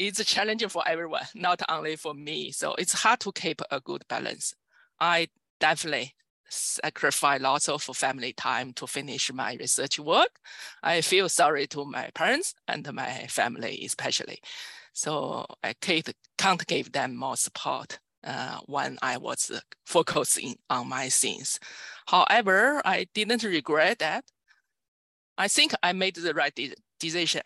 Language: English